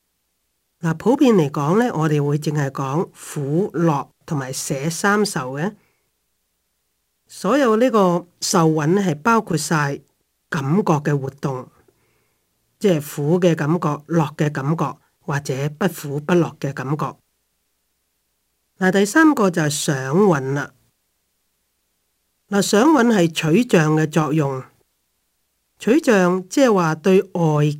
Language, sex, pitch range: Chinese, male, 135-180 Hz